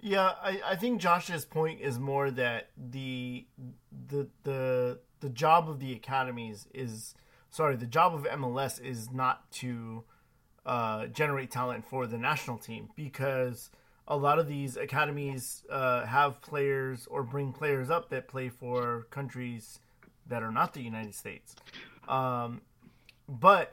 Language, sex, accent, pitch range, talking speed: English, male, American, 125-155 Hz, 140 wpm